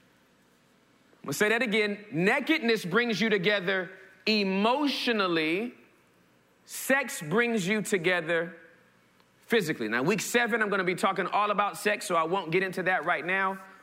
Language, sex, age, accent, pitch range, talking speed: English, male, 40-59, American, 200-255 Hz, 150 wpm